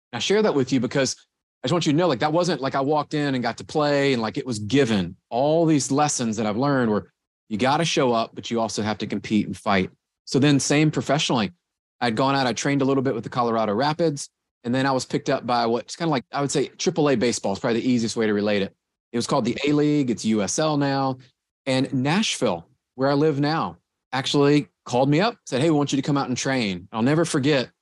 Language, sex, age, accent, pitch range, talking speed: English, male, 30-49, American, 115-145 Hz, 255 wpm